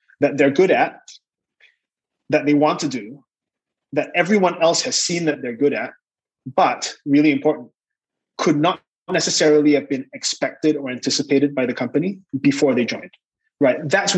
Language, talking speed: English, 155 wpm